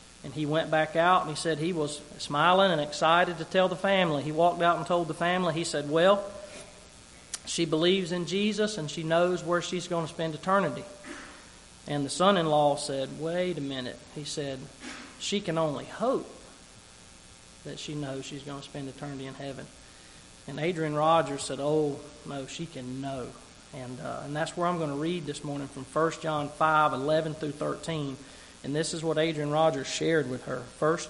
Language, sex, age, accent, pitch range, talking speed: English, male, 40-59, American, 140-170 Hz, 195 wpm